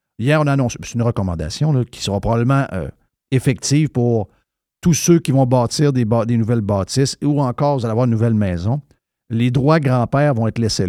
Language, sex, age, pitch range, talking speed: French, male, 50-69, 125-170 Hz, 200 wpm